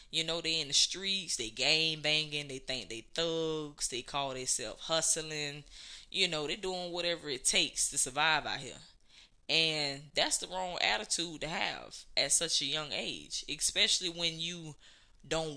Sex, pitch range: female, 140-185 Hz